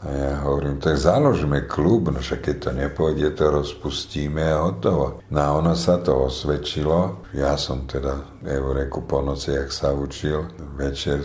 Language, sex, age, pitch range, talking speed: Slovak, male, 50-69, 70-80 Hz, 160 wpm